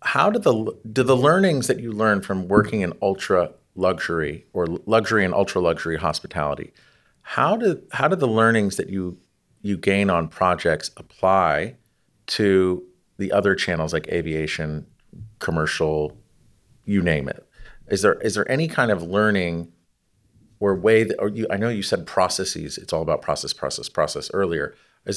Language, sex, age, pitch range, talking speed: English, male, 40-59, 90-110 Hz, 165 wpm